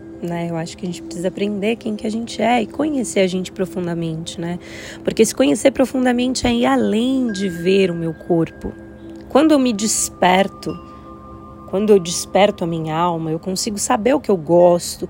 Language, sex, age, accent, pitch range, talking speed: Portuguese, female, 20-39, Brazilian, 175-230 Hz, 190 wpm